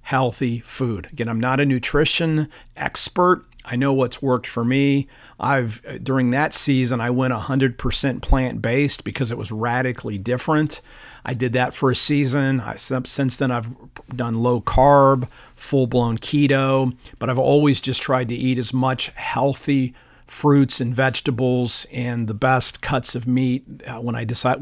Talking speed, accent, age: 155 wpm, American, 50-69